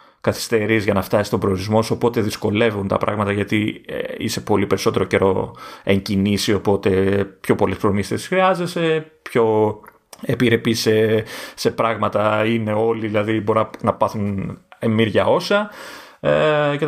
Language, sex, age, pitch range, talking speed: Greek, male, 30-49, 105-150 Hz, 135 wpm